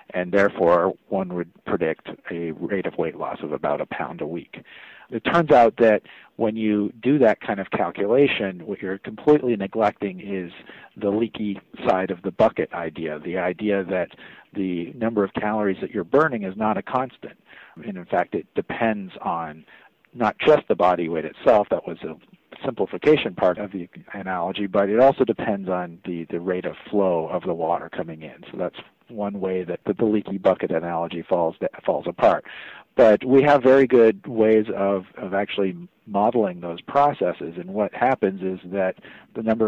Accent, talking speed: American, 180 wpm